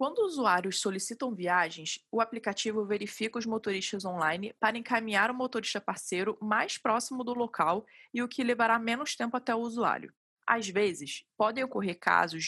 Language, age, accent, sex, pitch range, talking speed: Portuguese, 20-39, Brazilian, female, 200-245 Hz, 160 wpm